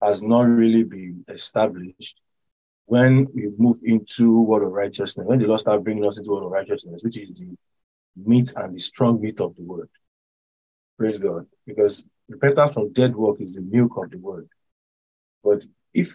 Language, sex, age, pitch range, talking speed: English, male, 20-39, 100-120 Hz, 180 wpm